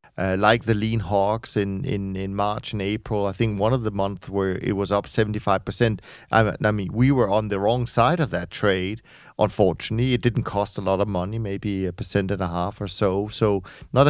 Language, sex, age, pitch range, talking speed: English, male, 40-59, 100-125 Hz, 225 wpm